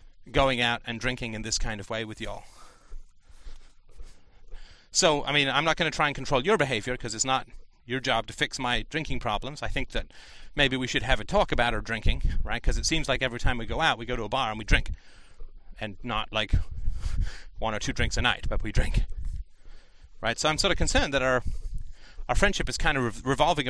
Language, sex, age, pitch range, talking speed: English, male, 30-49, 85-135 Hz, 230 wpm